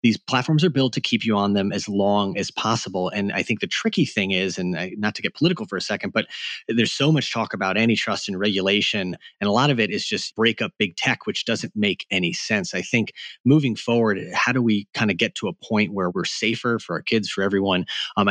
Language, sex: English, male